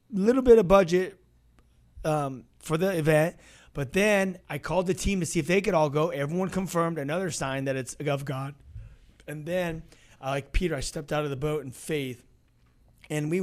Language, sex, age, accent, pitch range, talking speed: English, male, 30-49, American, 140-185 Hz, 195 wpm